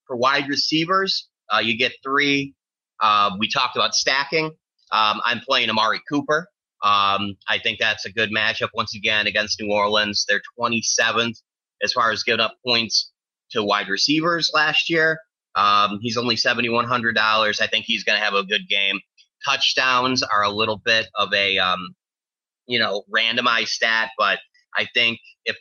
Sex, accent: male, American